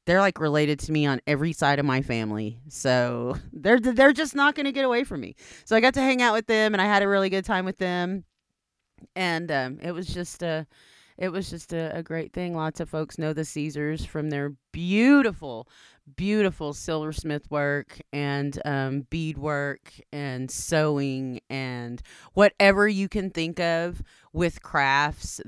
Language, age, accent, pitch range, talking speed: English, 30-49, American, 140-195 Hz, 180 wpm